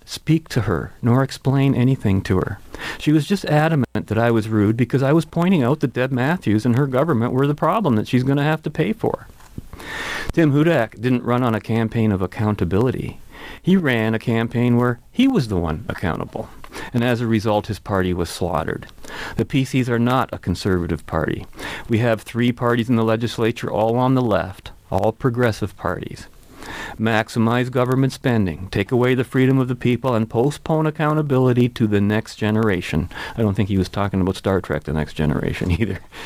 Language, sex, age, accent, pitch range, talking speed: English, male, 40-59, American, 105-135 Hz, 190 wpm